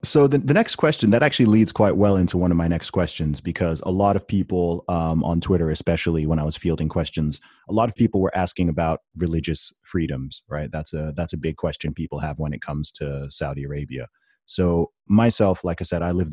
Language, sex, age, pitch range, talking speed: English, male, 30-49, 75-90 Hz, 225 wpm